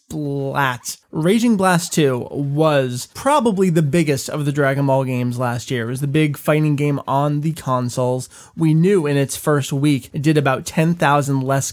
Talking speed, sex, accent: 180 wpm, male, American